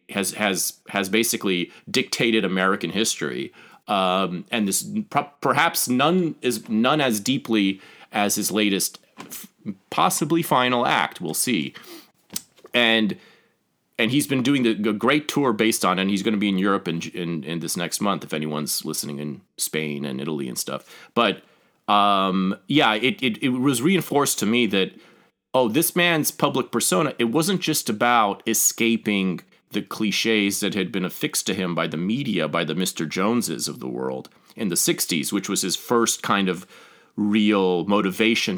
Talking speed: 170 wpm